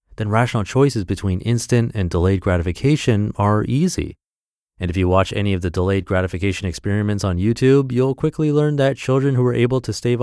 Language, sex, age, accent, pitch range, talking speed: English, male, 30-49, American, 90-125 Hz, 190 wpm